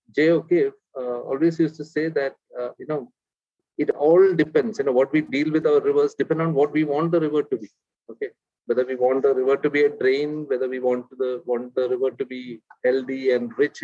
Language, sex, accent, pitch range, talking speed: Telugu, male, native, 125-180 Hz, 225 wpm